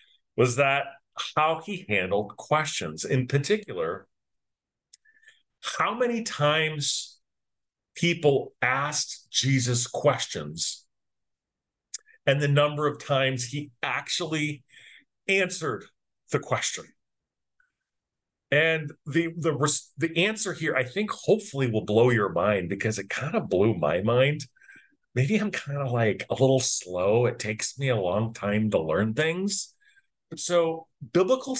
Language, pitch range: English, 130-215 Hz